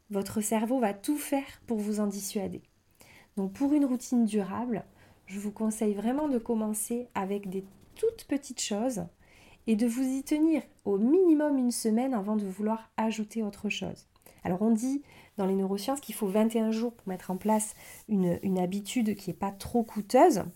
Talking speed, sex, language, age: 180 wpm, female, French, 30-49